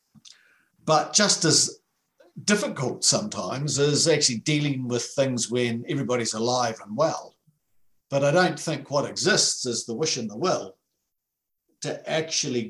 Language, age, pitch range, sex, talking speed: English, 60-79, 120-165 Hz, male, 135 wpm